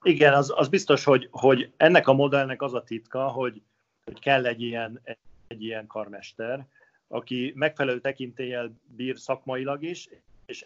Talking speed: 145 wpm